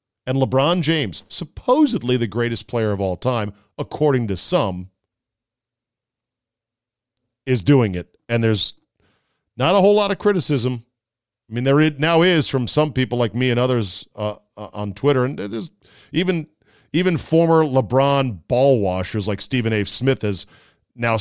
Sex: male